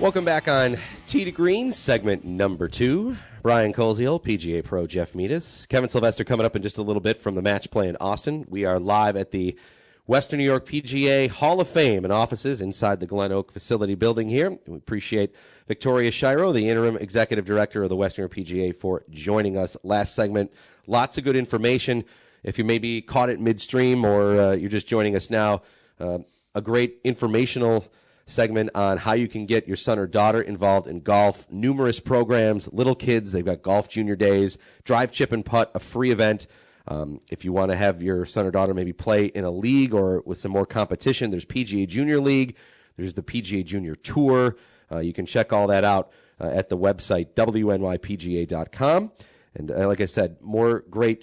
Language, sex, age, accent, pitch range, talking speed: English, male, 30-49, American, 100-120 Hz, 195 wpm